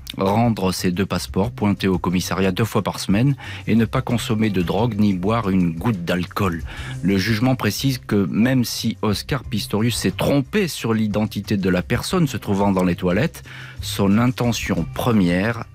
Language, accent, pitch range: French, French, 95-115 Hz